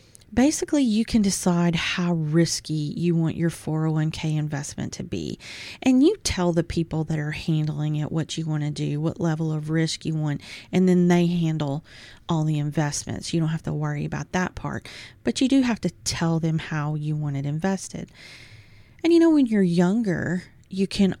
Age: 30-49